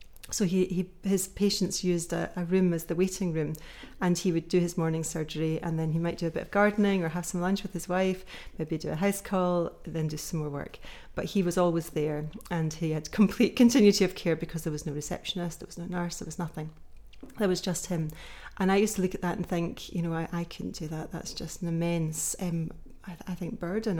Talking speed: 250 wpm